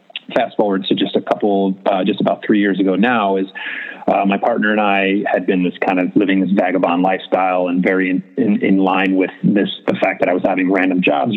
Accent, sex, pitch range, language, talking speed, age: American, male, 95-105 Hz, English, 230 wpm, 30-49